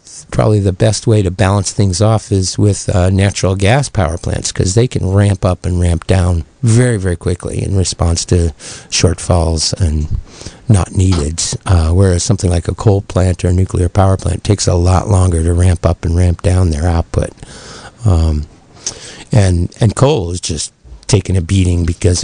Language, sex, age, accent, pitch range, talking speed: English, male, 60-79, American, 90-110 Hz, 180 wpm